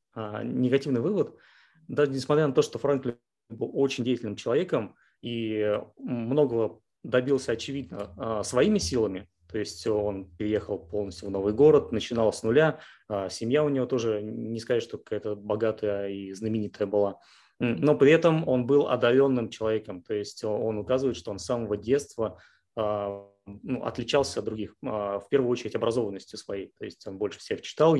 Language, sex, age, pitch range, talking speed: Russian, male, 20-39, 105-130 Hz, 150 wpm